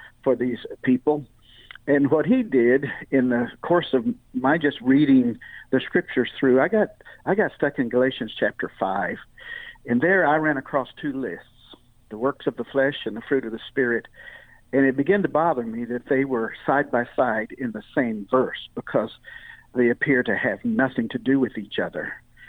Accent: American